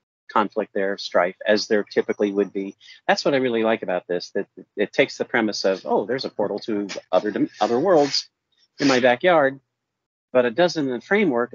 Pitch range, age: 100-125 Hz, 40-59